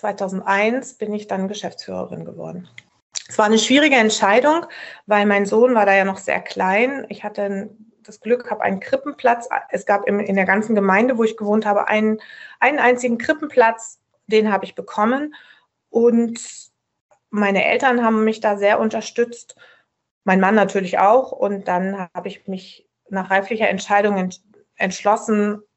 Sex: female